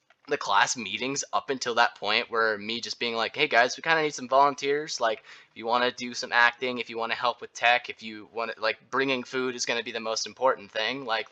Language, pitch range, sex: English, 120-150 Hz, male